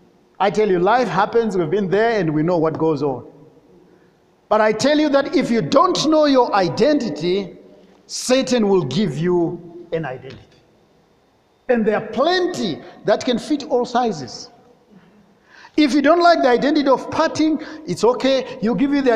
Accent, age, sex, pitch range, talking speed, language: South African, 50-69, male, 215-300 Hz, 170 wpm, English